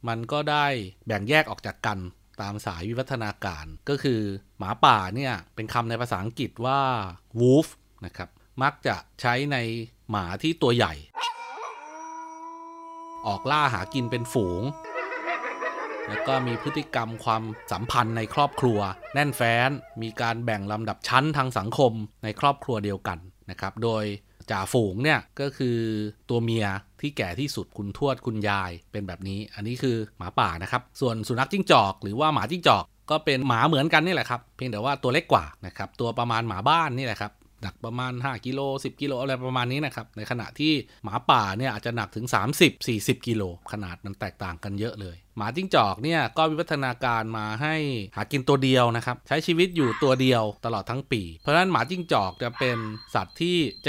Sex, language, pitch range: male, Thai, 105-145 Hz